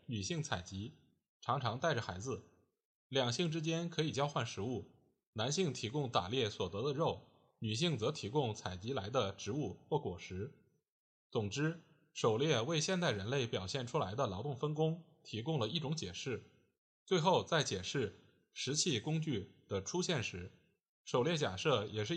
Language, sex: Chinese, male